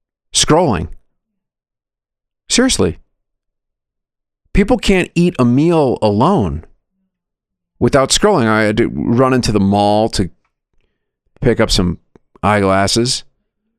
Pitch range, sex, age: 100-145 Hz, male, 40-59